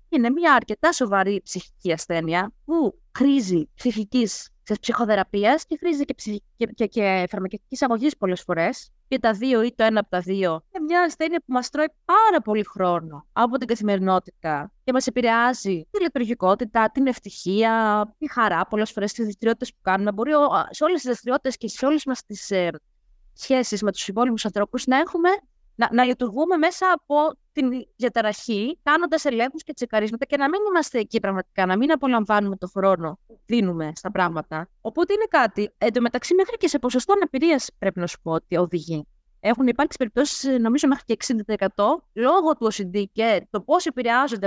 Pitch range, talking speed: 200-290 Hz, 170 wpm